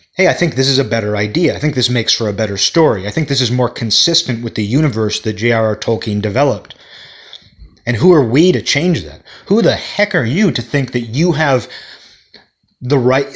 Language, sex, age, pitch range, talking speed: English, male, 30-49, 110-135 Hz, 215 wpm